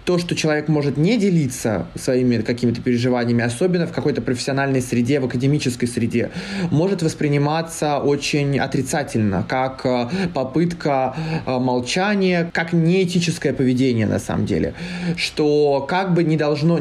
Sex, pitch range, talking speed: male, 130-170 Hz, 125 wpm